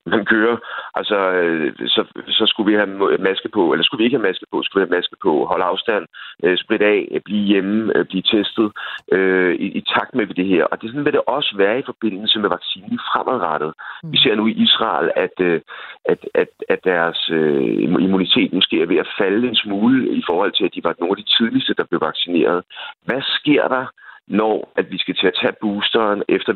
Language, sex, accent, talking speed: Danish, male, native, 210 wpm